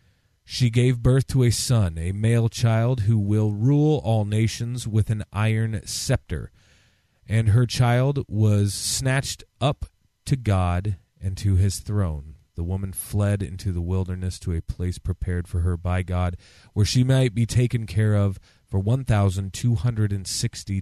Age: 30-49